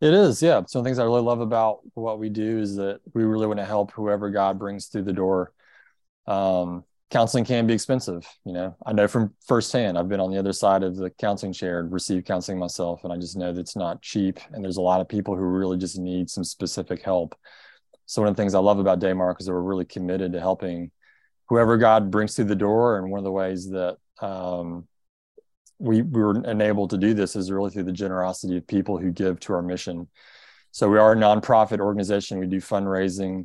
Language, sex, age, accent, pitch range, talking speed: English, male, 20-39, American, 90-105 Hz, 230 wpm